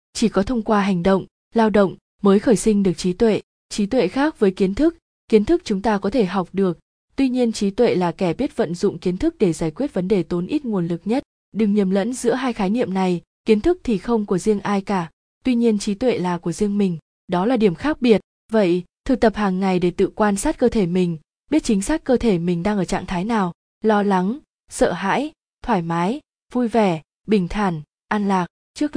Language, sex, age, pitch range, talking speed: Vietnamese, female, 20-39, 185-230 Hz, 235 wpm